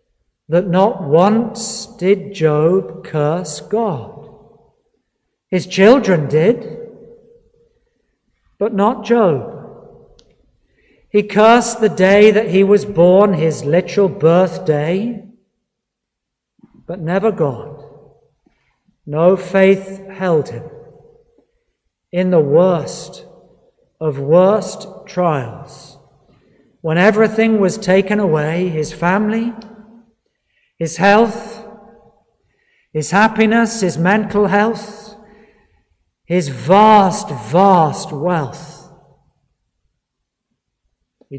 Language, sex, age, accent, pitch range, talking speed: English, male, 50-69, British, 165-220 Hz, 80 wpm